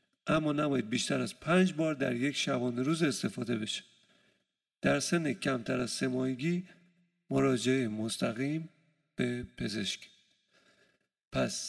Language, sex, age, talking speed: Persian, male, 50-69, 115 wpm